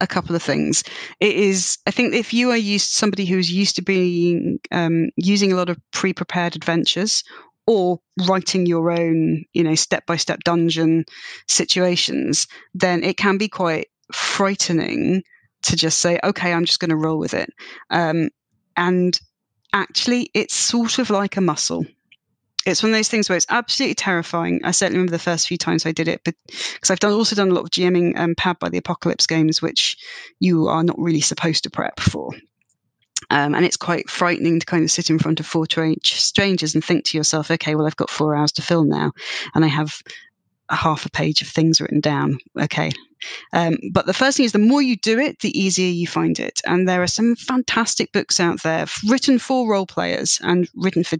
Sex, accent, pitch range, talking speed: female, British, 165-195 Hz, 205 wpm